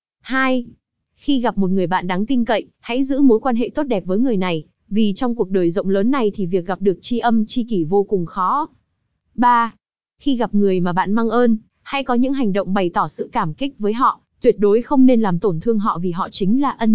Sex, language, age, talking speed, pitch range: female, Vietnamese, 20-39, 250 wpm, 195-245 Hz